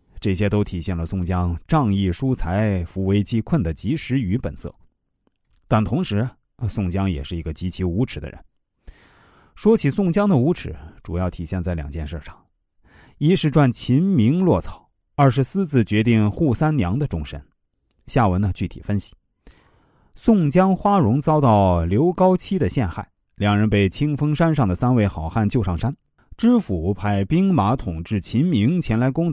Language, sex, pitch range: Chinese, male, 95-140 Hz